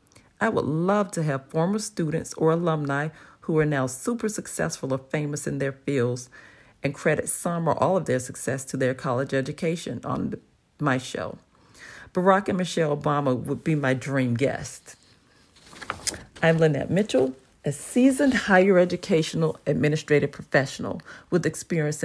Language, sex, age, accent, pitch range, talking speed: English, female, 40-59, American, 135-175 Hz, 145 wpm